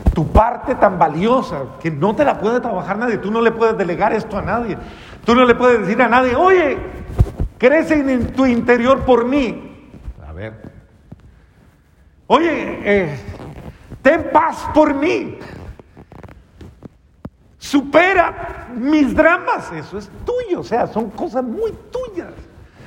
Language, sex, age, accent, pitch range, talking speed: Spanish, male, 50-69, Mexican, 195-275 Hz, 135 wpm